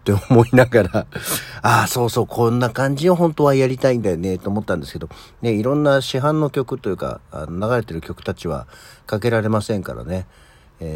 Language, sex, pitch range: Japanese, male, 85-120 Hz